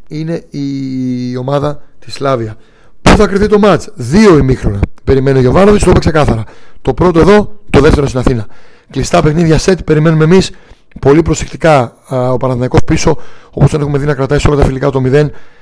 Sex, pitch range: male, 130-160 Hz